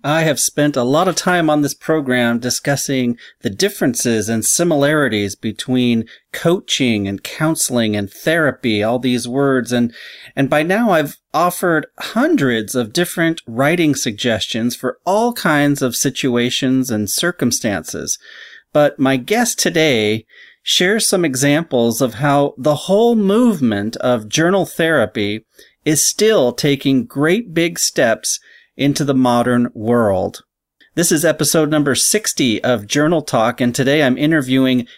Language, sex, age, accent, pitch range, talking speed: English, male, 40-59, American, 125-165 Hz, 135 wpm